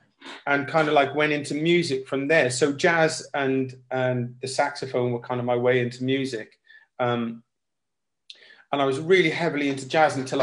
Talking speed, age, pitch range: 180 wpm, 40-59, 120-140 Hz